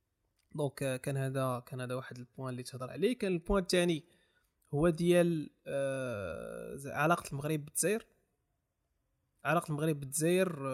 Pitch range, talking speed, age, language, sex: 130-165 Hz, 125 wpm, 20-39, Arabic, male